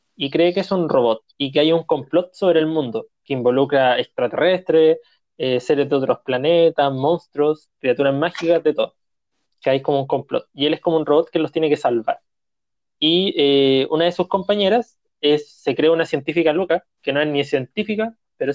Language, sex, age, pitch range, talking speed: Spanish, male, 20-39, 150-195 Hz, 195 wpm